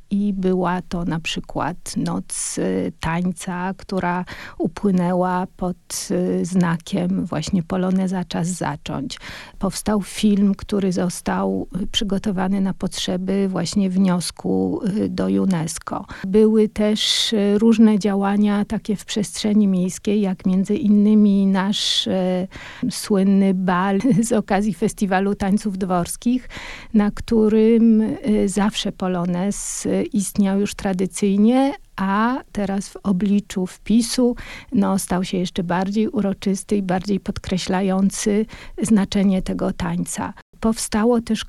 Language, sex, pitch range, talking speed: Polish, female, 185-215 Hz, 100 wpm